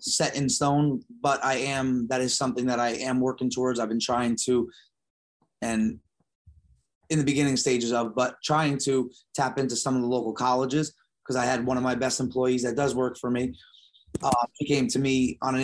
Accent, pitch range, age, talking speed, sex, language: American, 120-135 Hz, 30-49, 205 wpm, male, English